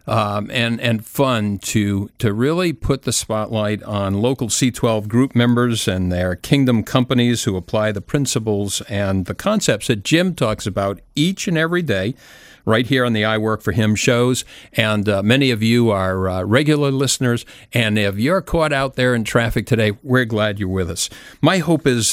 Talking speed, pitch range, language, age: 185 wpm, 105-130 Hz, English, 50-69